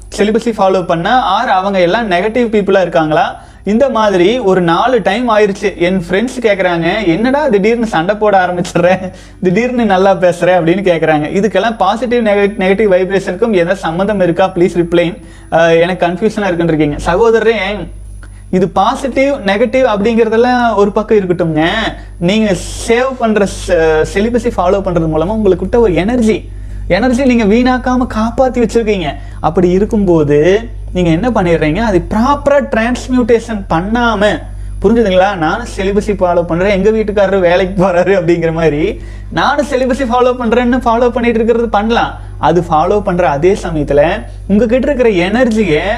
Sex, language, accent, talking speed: male, Tamil, native, 110 wpm